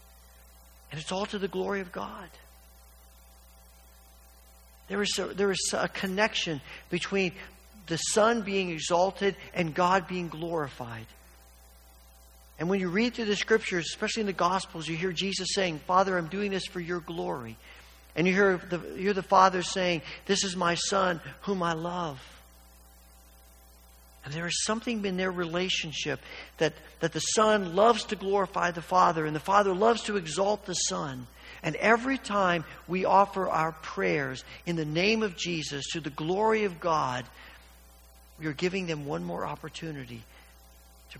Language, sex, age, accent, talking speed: English, male, 50-69, American, 155 wpm